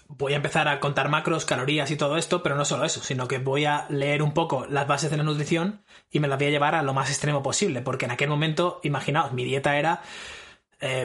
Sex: male